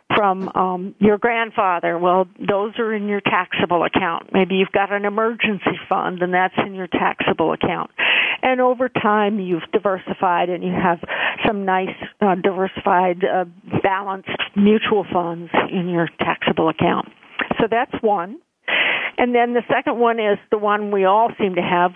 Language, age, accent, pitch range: English, 50-69, American, 185-220 Hz